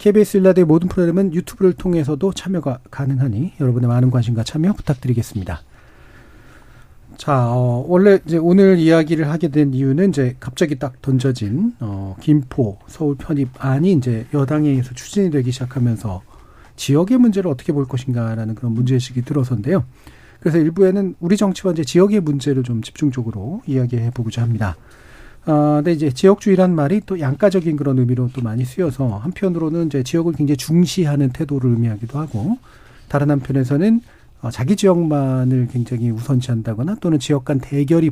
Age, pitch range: 40-59, 125-170 Hz